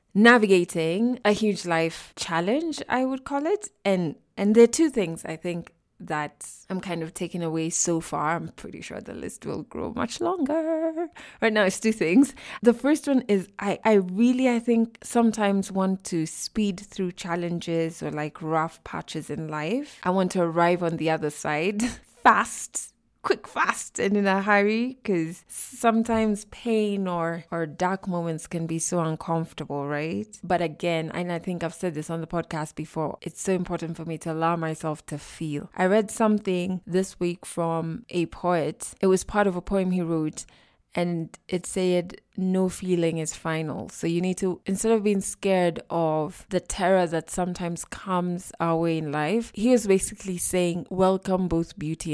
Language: English